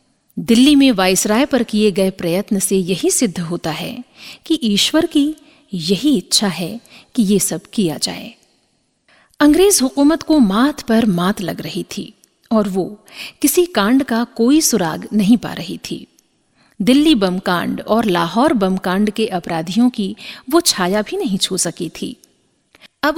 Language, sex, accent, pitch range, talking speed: Hindi, female, native, 190-265 Hz, 160 wpm